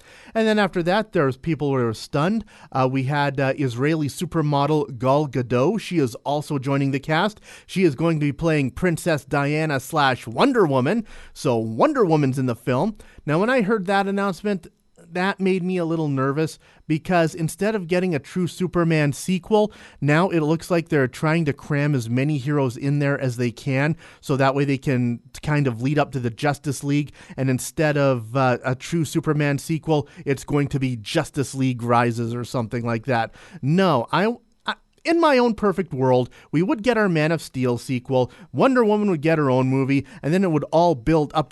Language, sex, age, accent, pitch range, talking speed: English, male, 30-49, American, 135-180 Hz, 200 wpm